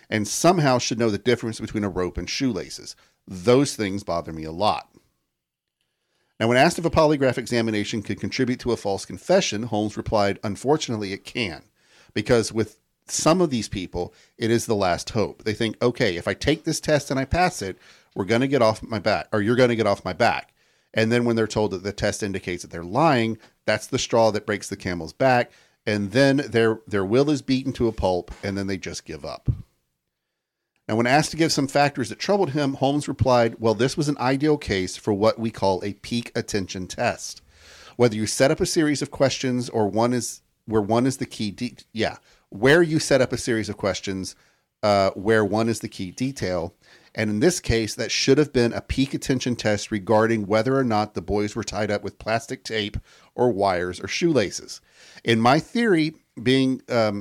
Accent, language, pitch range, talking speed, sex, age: American, English, 105-130 Hz, 210 wpm, male, 40-59